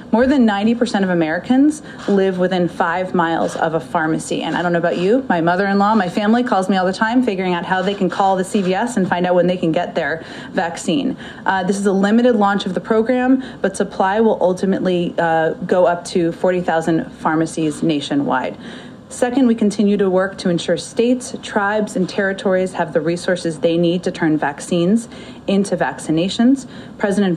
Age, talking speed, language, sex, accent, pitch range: 30-49, 190 wpm, English, female, American, 175-215 Hz